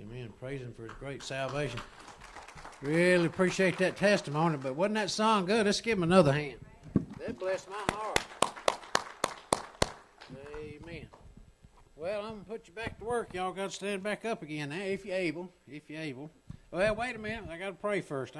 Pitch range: 130-185 Hz